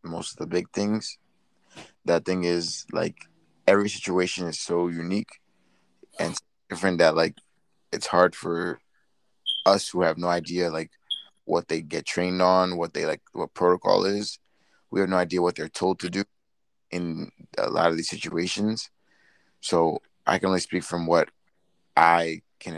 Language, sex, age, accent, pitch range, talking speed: English, male, 20-39, American, 85-95 Hz, 165 wpm